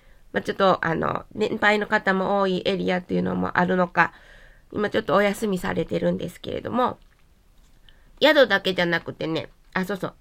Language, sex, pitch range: Japanese, female, 185-255 Hz